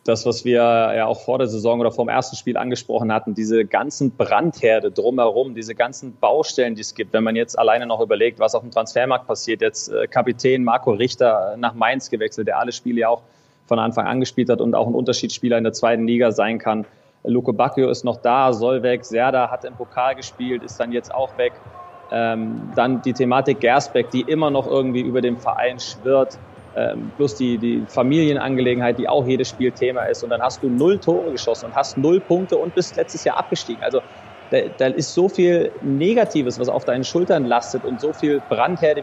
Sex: male